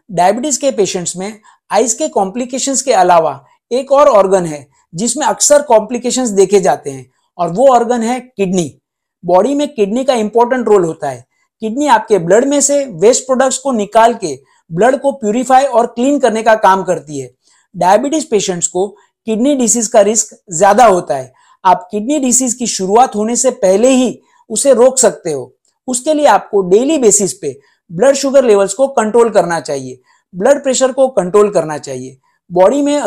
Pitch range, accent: 190-260 Hz, native